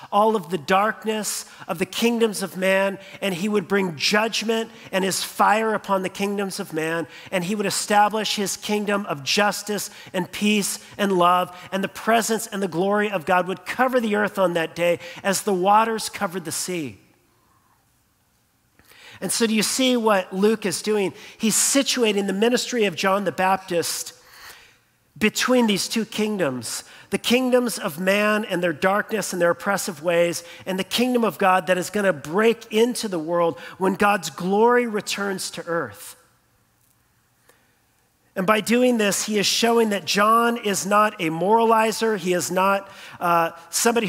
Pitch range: 185-220 Hz